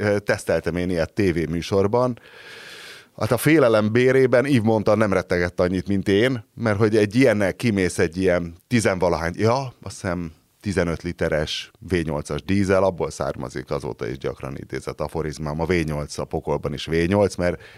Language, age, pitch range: Hungarian, 30-49, 85-125 Hz